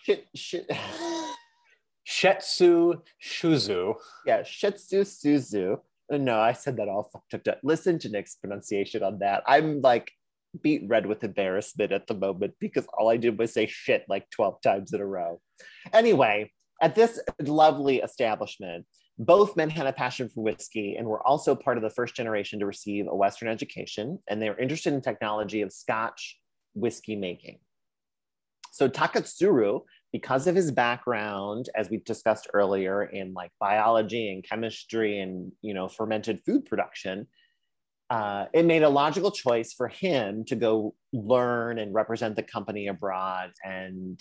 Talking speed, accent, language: 155 wpm, American, English